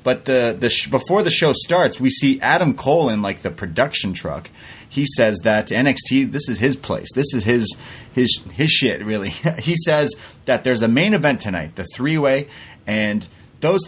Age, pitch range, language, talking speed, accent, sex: 30-49, 105-135 Hz, English, 195 wpm, American, male